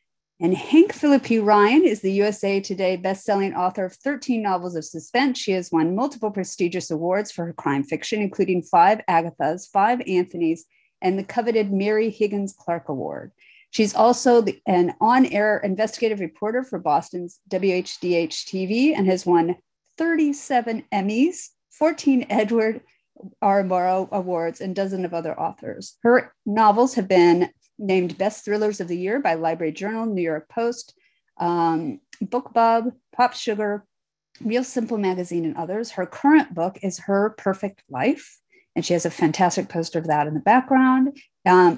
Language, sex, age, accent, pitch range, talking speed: English, female, 40-59, American, 180-240 Hz, 150 wpm